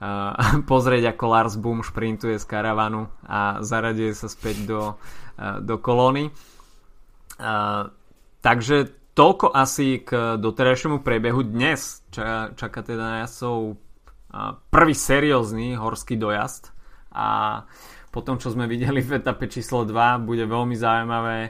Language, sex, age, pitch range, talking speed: Slovak, male, 20-39, 110-130 Hz, 135 wpm